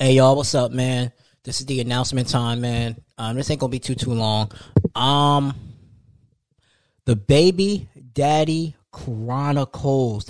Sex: male